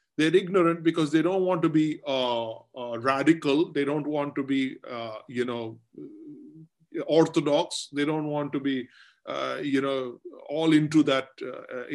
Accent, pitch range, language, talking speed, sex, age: Indian, 150-195 Hz, English, 160 wpm, male, 20-39